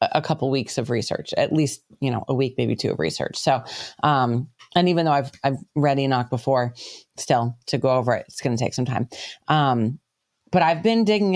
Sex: female